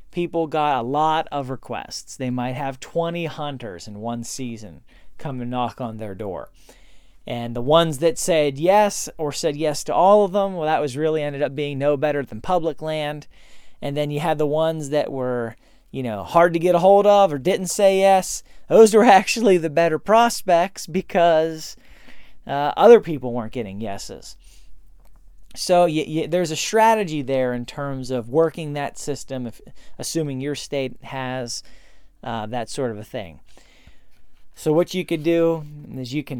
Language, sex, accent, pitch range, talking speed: English, male, American, 125-160 Hz, 180 wpm